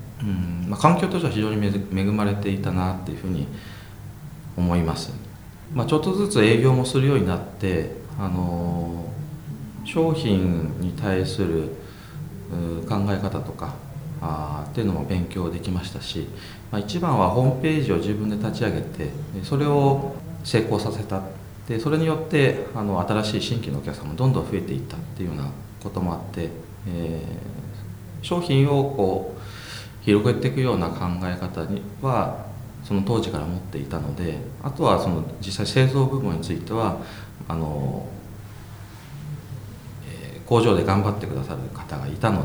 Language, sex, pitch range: Japanese, male, 90-125 Hz